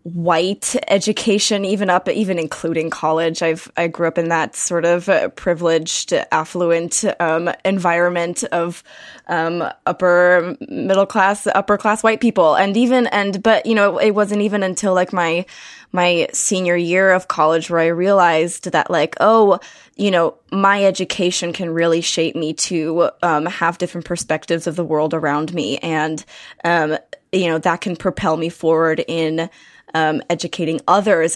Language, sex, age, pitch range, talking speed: English, female, 20-39, 165-190 Hz, 155 wpm